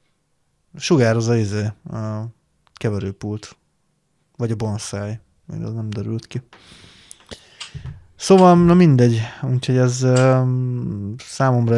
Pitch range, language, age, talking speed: 110-125 Hz, Hungarian, 20-39, 90 wpm